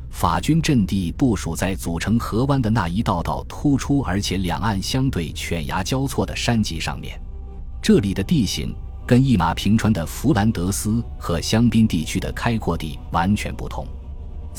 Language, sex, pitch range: Chinese, male, 80-115 Hz